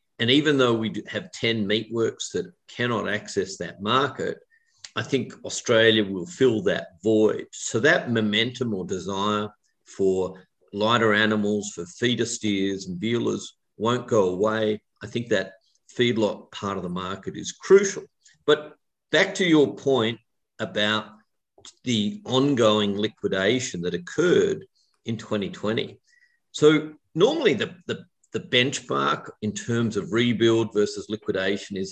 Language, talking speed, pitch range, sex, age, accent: English, 135 wpm, 105-140 Hz, male, 50-69, Australian